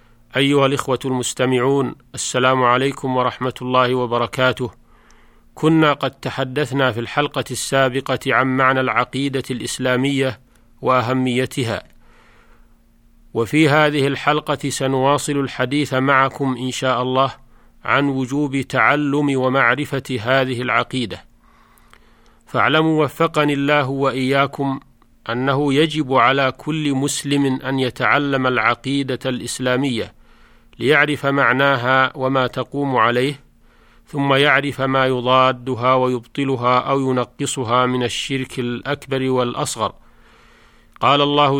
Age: 40-59